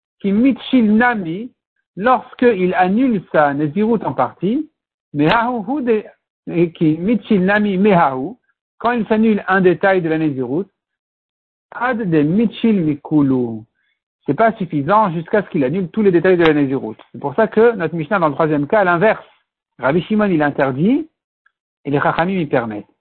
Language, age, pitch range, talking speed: French, 60-79, 155-220 Hz, 145 wpm